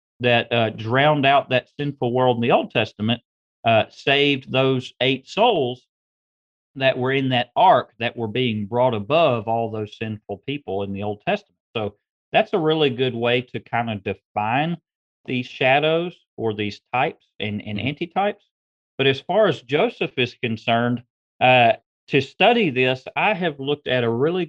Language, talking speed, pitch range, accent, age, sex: English, 170 wpm, 110-135 Hz, American, 40-59, male